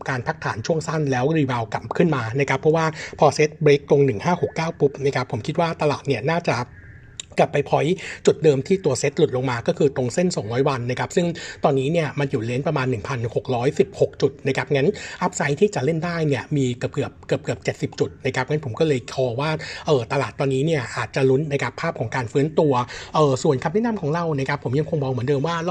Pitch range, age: 130-165 Hz, 60-79